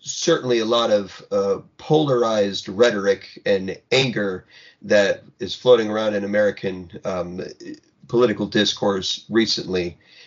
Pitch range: 100-130 Hz